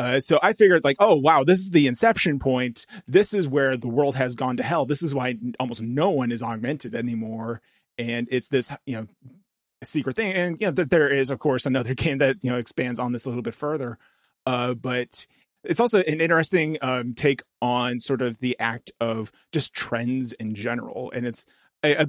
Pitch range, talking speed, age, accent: 125-155 Hz, 215 wpm, 30-49, American